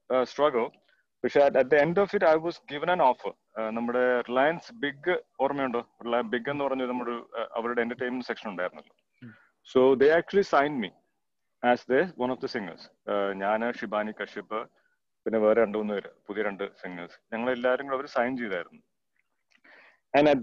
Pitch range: 120-150 Hz